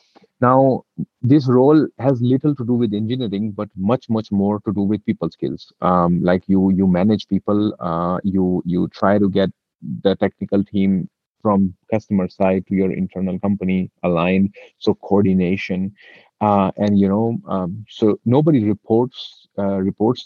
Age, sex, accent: 30-49, male, Indian